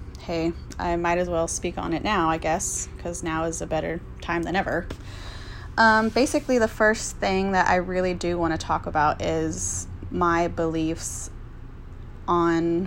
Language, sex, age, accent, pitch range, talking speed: English, female, 20-39, American, 160-185 Hz, 170 wpm